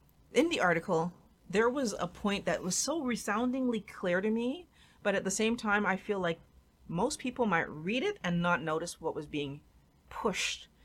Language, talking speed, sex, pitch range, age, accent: English, 190 wpm, female, 180-265 Hz, 40-59, American